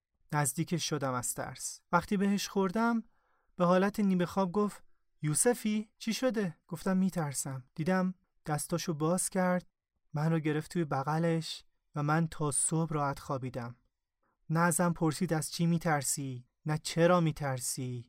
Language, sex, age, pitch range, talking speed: Persian, male, 30-49, 145-180 Hz, 135 wpm